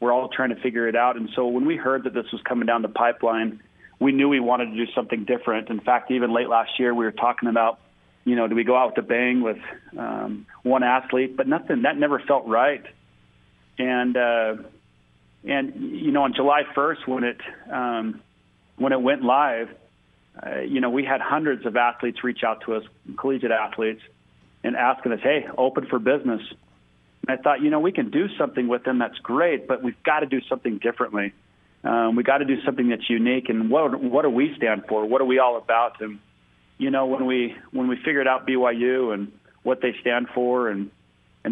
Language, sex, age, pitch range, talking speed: English, male, 40-59, 110-130 Hz, 210 wpm